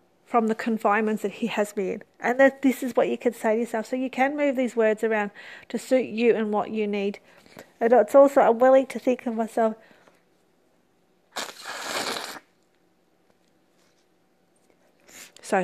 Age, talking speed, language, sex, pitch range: 40-59, 155 wpm, English, female, 220-255 Hz